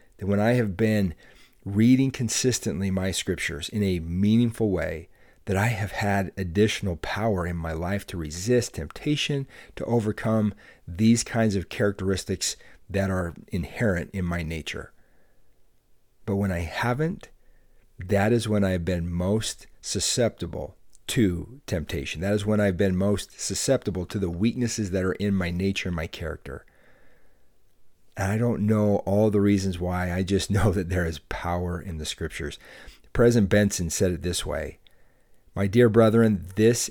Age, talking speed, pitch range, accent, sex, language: 40-59, 160 wpm, 90-110 Hz, American, male, English